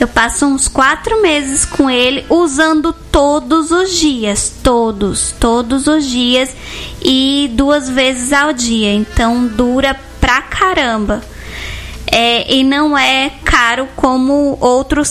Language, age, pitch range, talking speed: Portuguese, 10-29, 235-285 Hz, 125 wpm